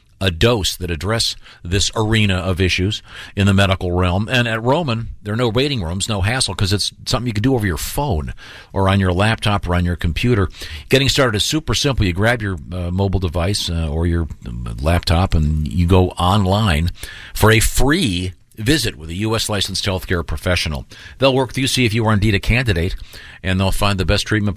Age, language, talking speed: 50-69, English, 210 wpm